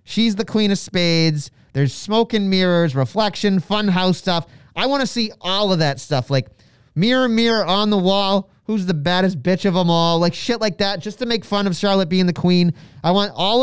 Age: 30-49